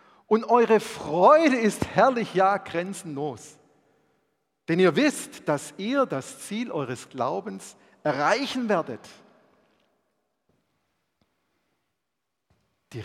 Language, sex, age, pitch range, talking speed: German, male, 50-69, 125-195 Hz, 85 wpm